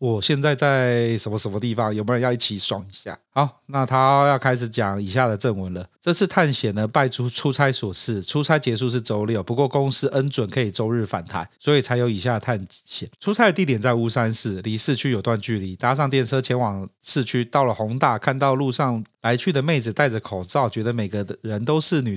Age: 30-49